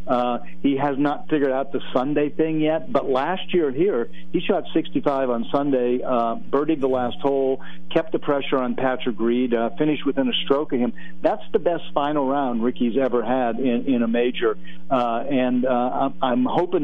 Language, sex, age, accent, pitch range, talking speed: English, male, 50-69, American, 120-145 Hz, 190 wpm